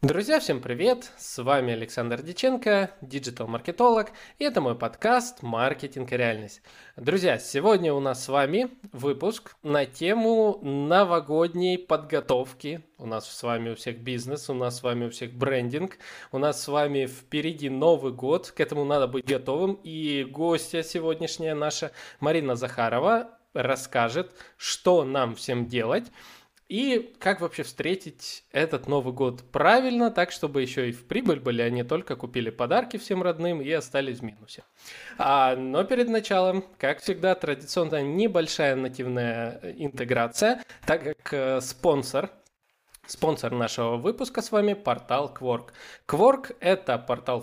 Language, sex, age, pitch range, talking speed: Russian, male, 20-39, 125-185 Hz, 140 wpm